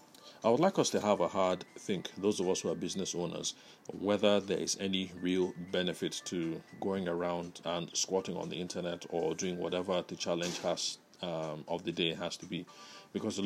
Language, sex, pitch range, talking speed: English, male, 90-100 Hz, 200 wpm